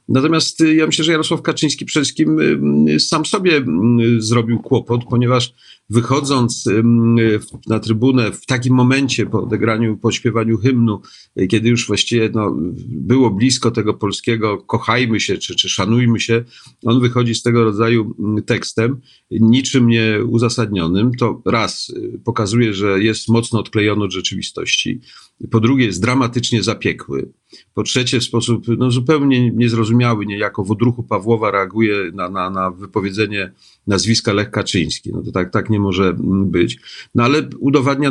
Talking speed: 140 wpm